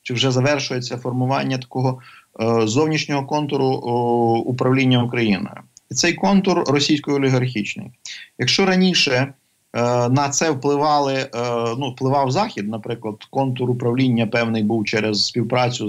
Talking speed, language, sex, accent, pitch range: 115 wpm, Ukrainian, male, native, 115-145 Hz